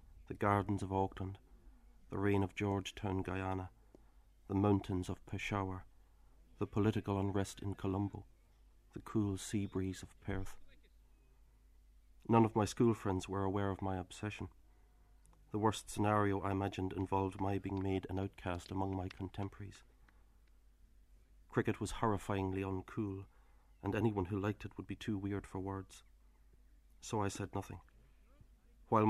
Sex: male